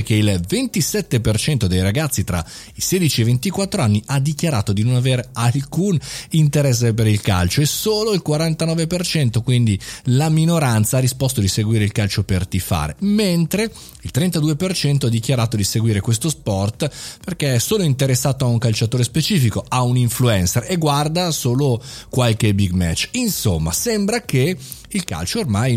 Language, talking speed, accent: Italian, 160 wpm, native